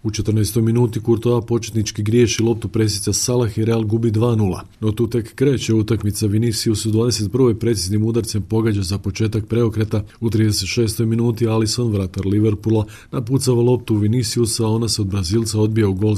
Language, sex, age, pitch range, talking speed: Croatian, male, 40-59, 105-120 Hz, 170 wpm